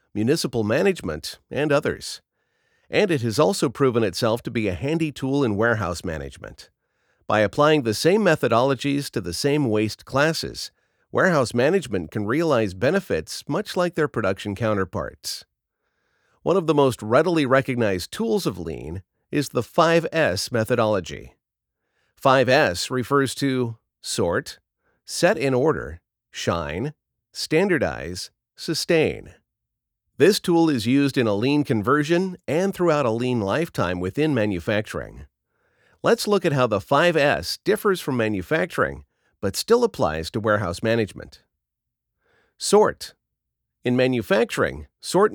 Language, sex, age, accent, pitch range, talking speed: English, male, 50-69, American, 105-155 Hz, 125 wpm